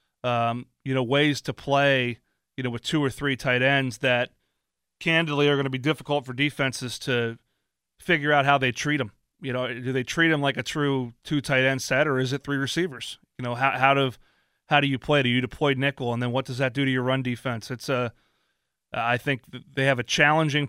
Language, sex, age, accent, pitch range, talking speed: English, male, 30-49, American, 125-145 Hz, 225 wpm